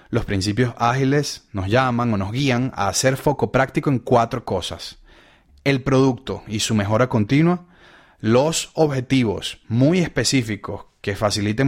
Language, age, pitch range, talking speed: Spanish, 30-49, 110-140 Hz, 140 wpm